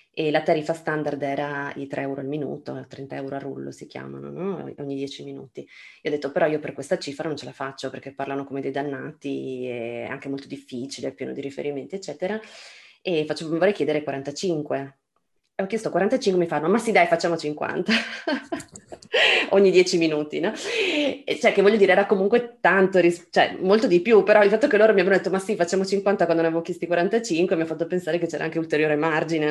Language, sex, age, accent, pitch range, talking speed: Italian, female, 20-39, native, 150-195 Hz, 215 wpm